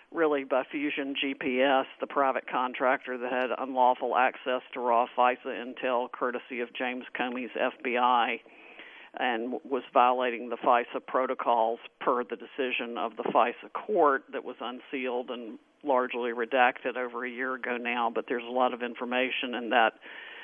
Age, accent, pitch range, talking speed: 50-69, American, 120-135 Hz, 155 wpm